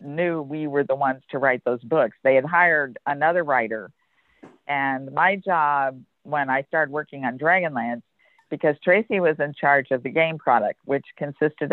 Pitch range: 130-155 Hz